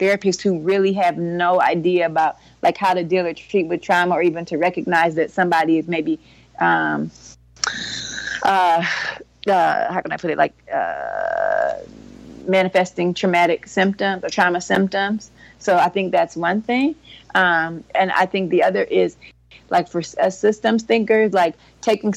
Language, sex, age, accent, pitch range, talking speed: English, female, 30-49, American, 165-190 Hz, 160 wpm